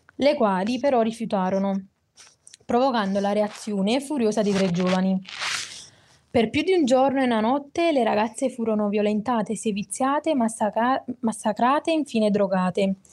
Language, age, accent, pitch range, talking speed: Italian, 20-39, native, 210-260 Hz, 130 wpm